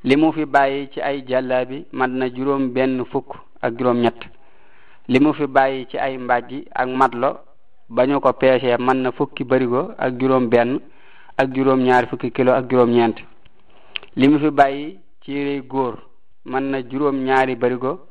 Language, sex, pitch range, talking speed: French, male, 125-135 Hz, 135 wpm